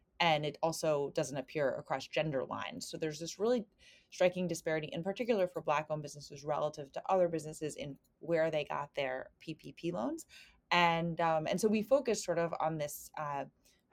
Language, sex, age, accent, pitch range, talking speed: English, female, 20-39, American, 150-180 Hz, 175 wpm